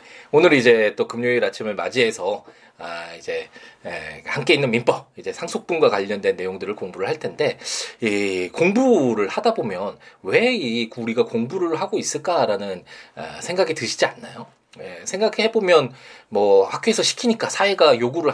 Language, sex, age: Korean, male, 20-39